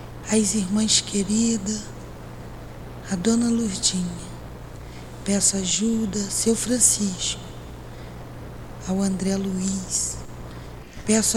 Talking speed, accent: 75 wpm, Brazilian